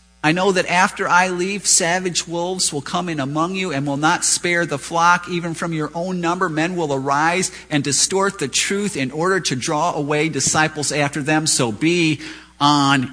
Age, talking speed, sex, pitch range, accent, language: 50-69, 190 wpm, male, 130-180 Hz, American, English